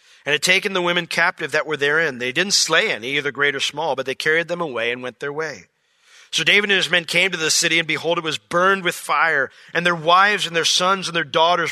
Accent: American